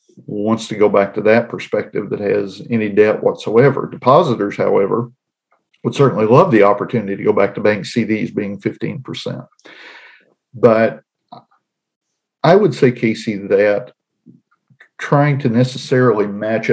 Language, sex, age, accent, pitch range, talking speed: English, male, 50-69, American, 105-125 Hz, 135 wpm